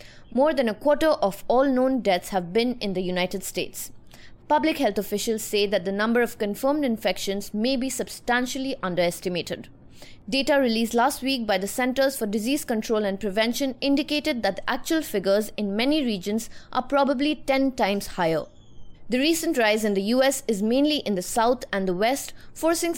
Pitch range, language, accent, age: 205-275 Hz, English, Indian, 20-39